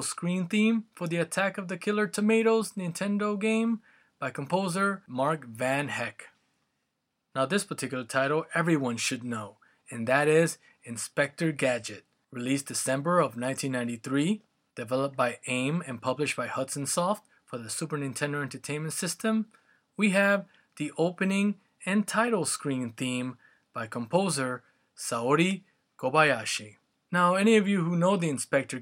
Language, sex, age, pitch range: English, male, 20-39, 130-185 Hz